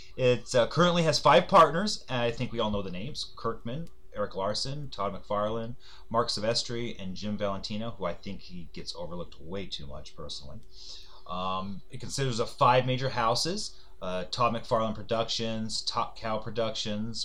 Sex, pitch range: male, 100-135 Hz